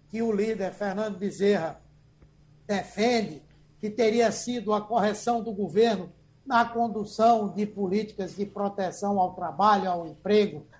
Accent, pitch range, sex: Brazilian, 205-250 Hz, male